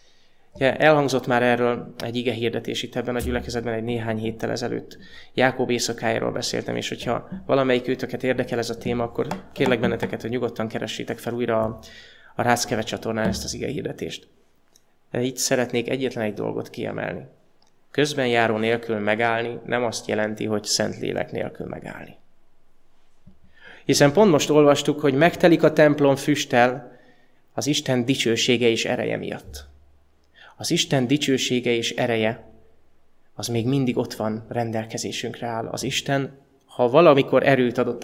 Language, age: Hungarian, 20-39